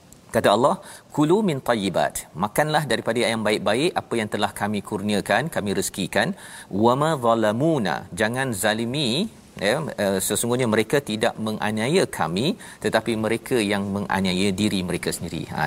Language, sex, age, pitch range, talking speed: Malayalam, male, 40-59, 105-130 Hz, 135 wpm